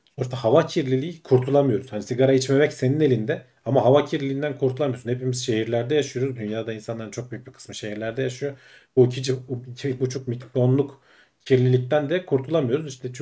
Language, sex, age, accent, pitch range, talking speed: Turkish, male, 40-59, native, 115-135 Hz, 150 wpm